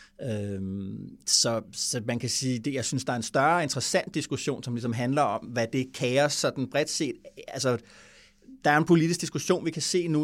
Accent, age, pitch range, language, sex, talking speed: Danish, 30-49, 120-150 Hz, English, male, 210 wpm